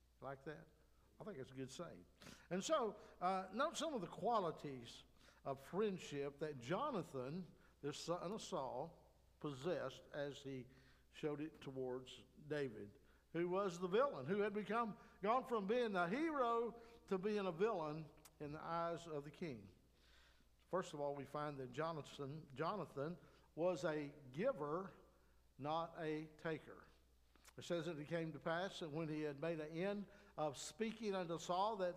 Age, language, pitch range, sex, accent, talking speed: 60-79, English, 145-180 Hz, male, American, 160 wpm